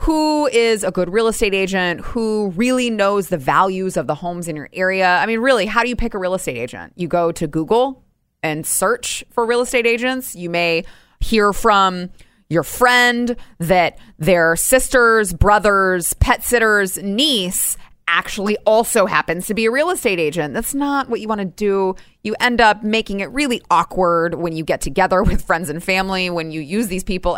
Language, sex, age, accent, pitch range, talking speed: English, female, 20-39, American, 160-210 Hz, 195 wpm